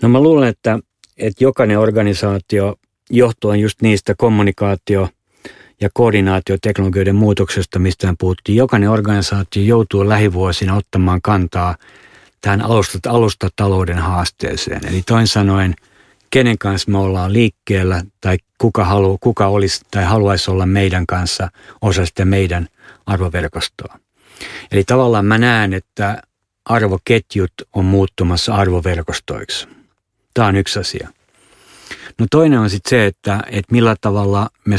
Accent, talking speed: native, 120 wpm